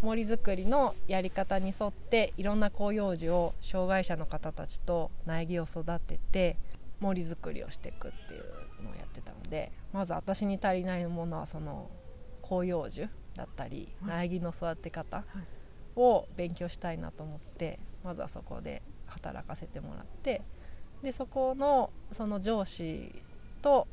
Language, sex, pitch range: Japanese, female, 170-210 Hz